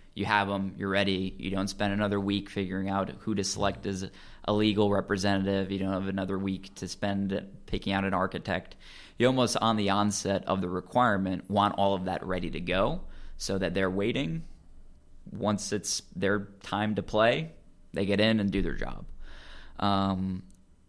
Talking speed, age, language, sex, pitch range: 180 wpm, 20-39, English, male, 95-105 Hz